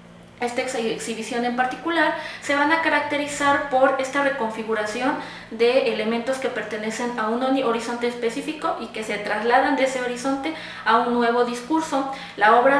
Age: 20-39